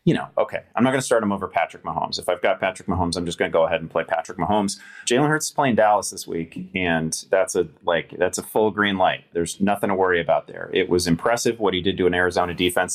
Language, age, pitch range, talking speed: English, 30-49, 90-130 Hz, 275 wpm